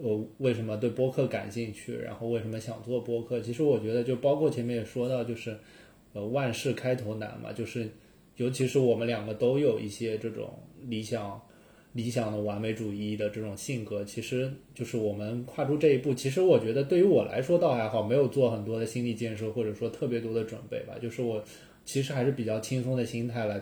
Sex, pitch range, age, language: male, 110-135 Hz, 20-39, Chinese